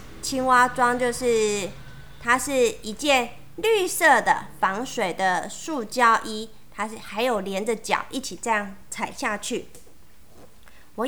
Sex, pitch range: female, 225-330 Hz